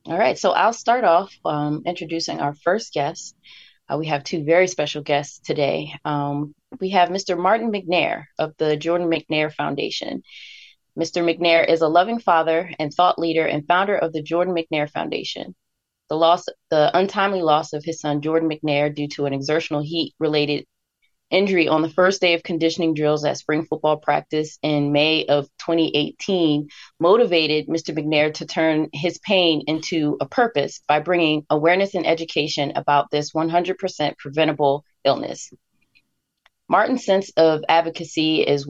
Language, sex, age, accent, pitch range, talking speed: English, female, 20-39, American, 150-170 Hz, 160 wpm